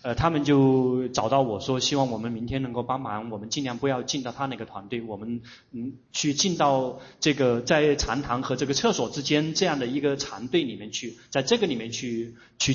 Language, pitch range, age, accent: Chinese, 120-145 Hz, 30-49, native